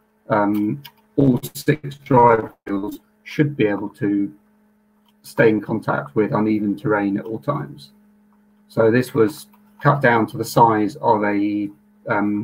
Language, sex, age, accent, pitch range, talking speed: English, male, 40-59, British, 105-140 Hz, 140 wpm